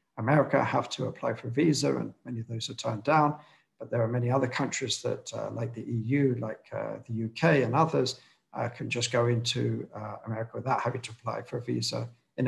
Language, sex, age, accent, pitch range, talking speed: English, male, 50-69, British, 115-130 Hz, 220 wpm